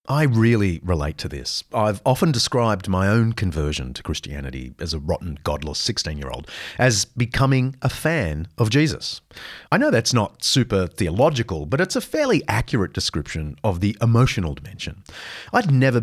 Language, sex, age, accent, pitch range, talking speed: English, male, 40-59, Australian, 85-125 Hz, 155 wpm